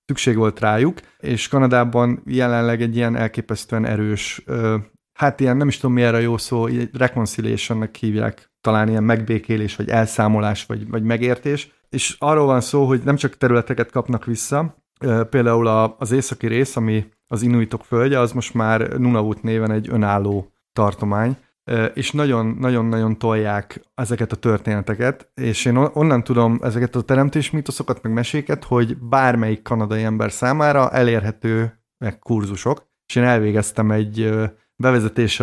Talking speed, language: 140 wpm, Hungarian